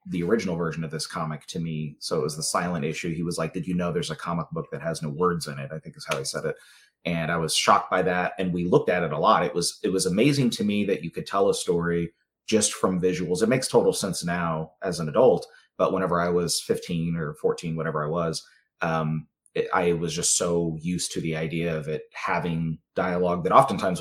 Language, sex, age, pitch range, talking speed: English, male, 30-49, 80-90 Hz, 245 wpm